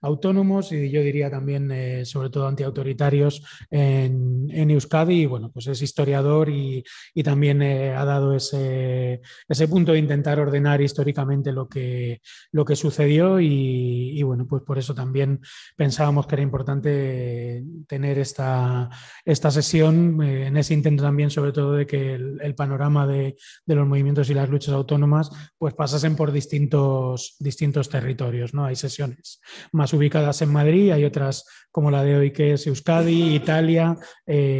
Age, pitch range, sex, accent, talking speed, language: 20-39, 135-150 Hz, male, Spanish, 165 wpm, Spanish